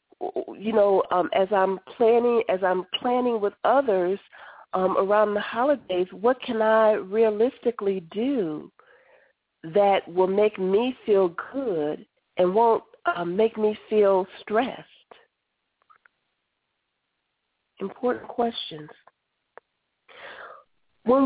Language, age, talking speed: English, 40-59, 100 wpm